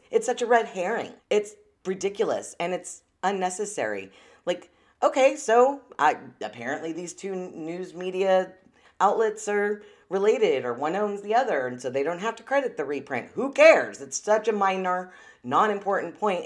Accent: American